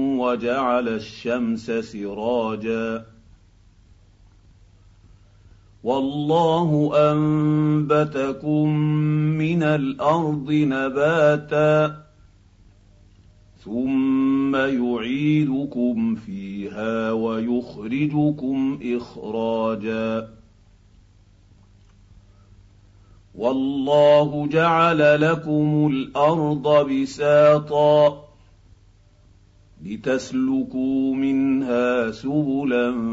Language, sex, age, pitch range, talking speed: Arabic, male, 50-69, 100-150 Hz, 40 wpm